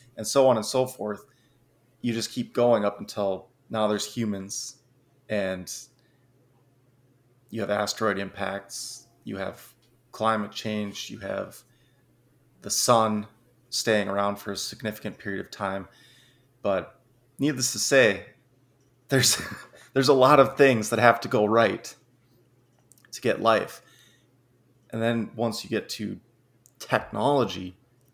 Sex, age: male, 30-49